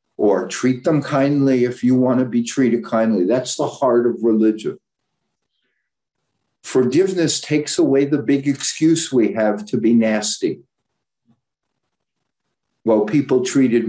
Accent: American